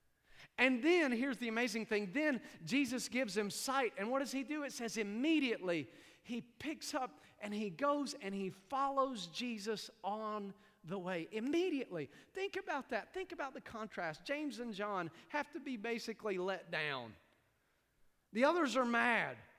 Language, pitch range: English, 180-270 Hz